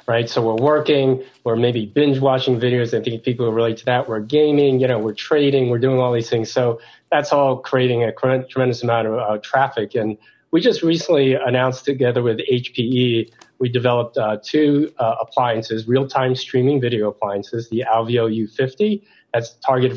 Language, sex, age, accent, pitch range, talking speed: English, male, 30-49, American, 115-135 Hz, 180 wpm